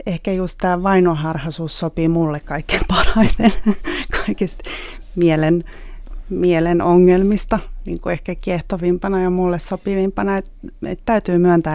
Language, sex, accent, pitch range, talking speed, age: Finnish, female, native, 165-195 Hz, 110 wpm, 30-49